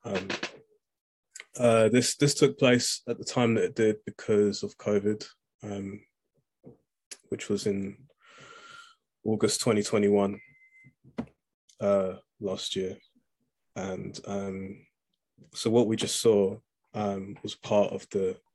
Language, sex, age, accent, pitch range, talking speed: English, male, 20-39, British, 95-115 Hz, 115 wpm